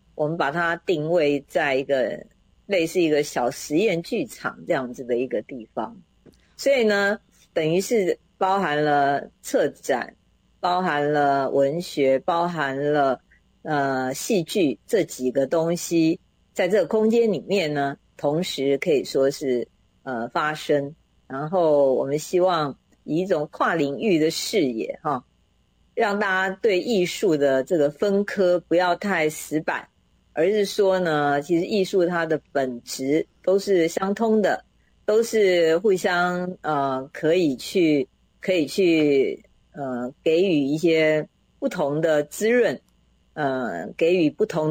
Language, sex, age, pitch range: Chinese, female, 50-69, 145-185 Hz